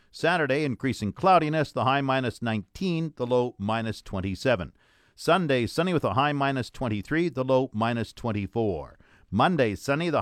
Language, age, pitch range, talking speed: English, 50-69, 120-150 Hz, 145 wpm